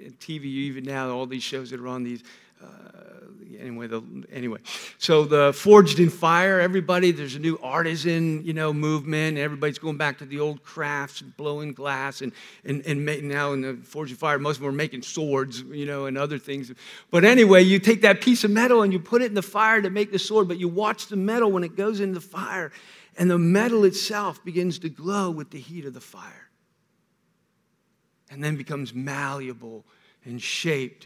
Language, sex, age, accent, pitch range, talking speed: English, male, 50-69, American, 150-195 Hz, 200 wpm